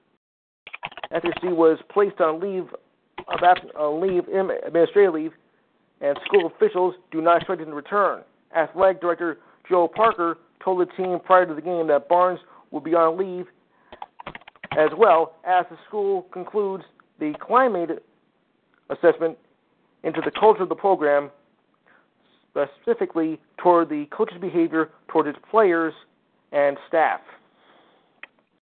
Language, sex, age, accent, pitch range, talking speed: English, male, 50-69, American, 155-185 Hz, 130 wpm